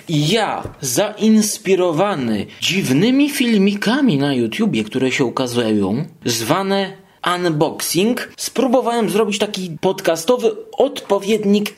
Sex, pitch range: male, 155-225 Hz